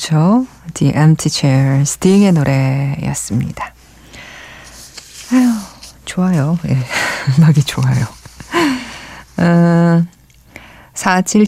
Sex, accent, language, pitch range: female, native, Korean, 135-185 Hz